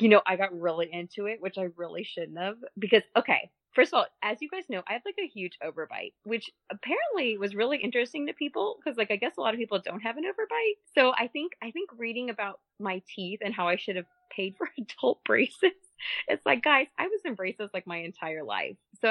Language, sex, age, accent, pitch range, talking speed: English, female, 20-39, American, 185-260 Hz, 240 wpm